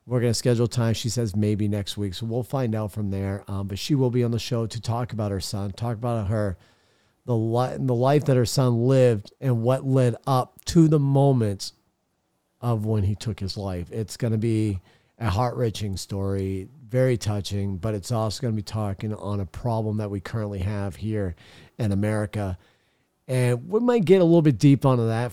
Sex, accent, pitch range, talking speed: male, American, 100-125 Hz, 210 wpm